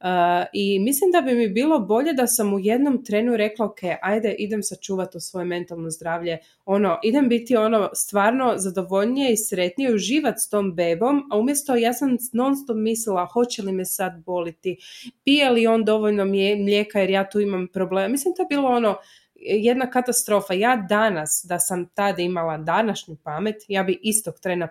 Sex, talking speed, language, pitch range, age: female, 175 wpm, Croatian, 175-220 Hz, 20-39